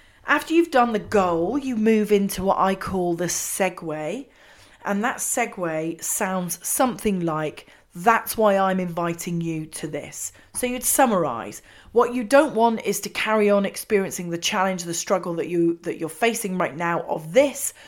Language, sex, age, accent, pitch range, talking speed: English, female, 40-59, British, 175-220 Hz, 170 wpm